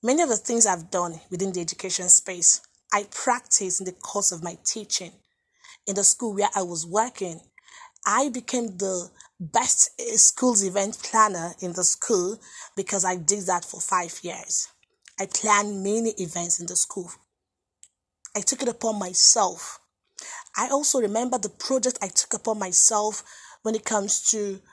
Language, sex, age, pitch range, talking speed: English, female, 20-39, 185-240 Hz, 165 wpm